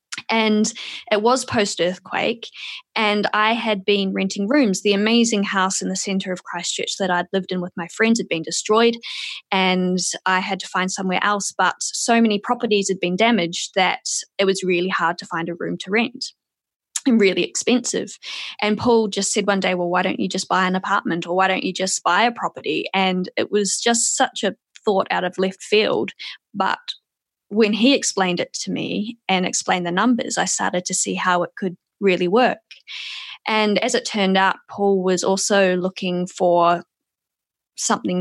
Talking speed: 190 wpm